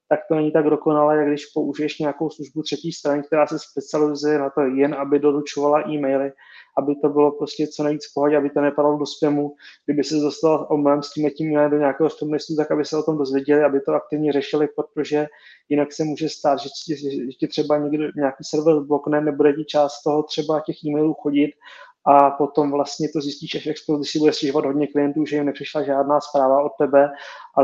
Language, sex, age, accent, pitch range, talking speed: Czech, male, 20-39, native, 145-150 Hz, 200 wpm